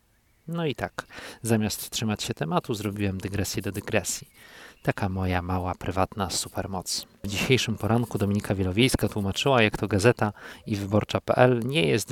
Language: Polish